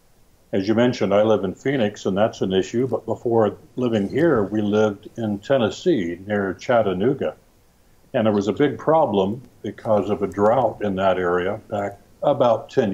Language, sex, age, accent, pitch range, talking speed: English, male, 60-79, American, 100-115 Hz, 170 wpm